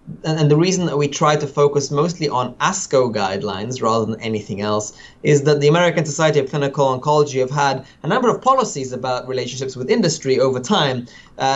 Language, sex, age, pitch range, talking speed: English, male, 30-49, 125-150 Hz, 190 wpm